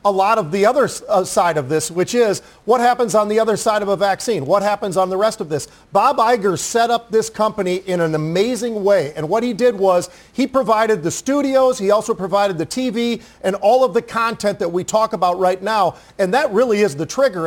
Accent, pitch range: American, 190-230 Hz